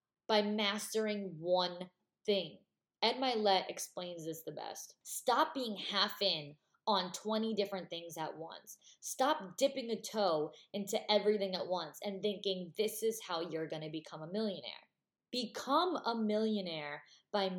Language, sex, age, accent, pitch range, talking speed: English, female, 20-39, American, 180-240 Hz, 145 wpm